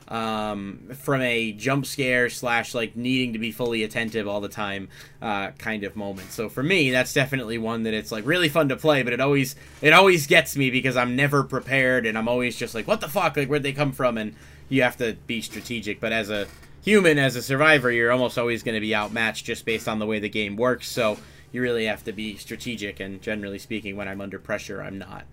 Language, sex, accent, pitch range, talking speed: English, male, American, 110-145 Hz, 235 wpm